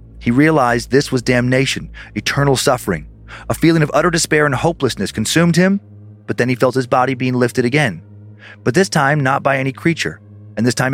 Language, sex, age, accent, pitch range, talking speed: English, male, 30-49, American, 110-145 Hz, 190 wpm